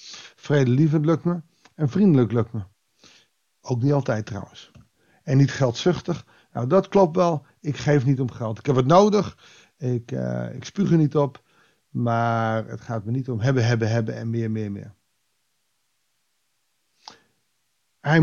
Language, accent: Dutch, Dutch